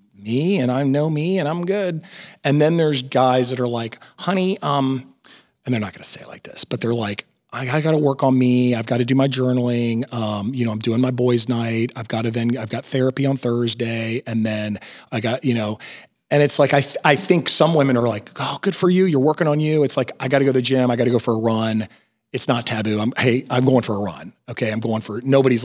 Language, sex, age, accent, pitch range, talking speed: English, male, 40-59, American, 115-140 Hz, 260 wpm